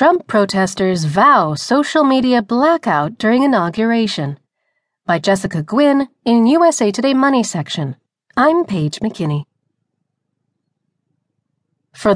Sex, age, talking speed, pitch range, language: female, 30-49, 100 wpm, 160-245 Hz, English